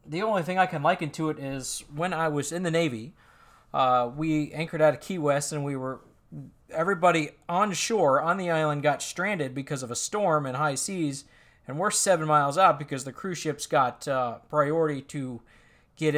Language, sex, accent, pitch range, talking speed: English, male, American, 130-160 Hz, 200 wpm